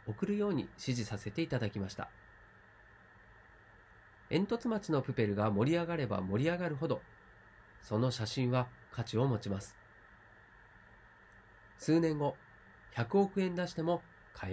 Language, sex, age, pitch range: Japanese, male, 40-59, 105-150 Hz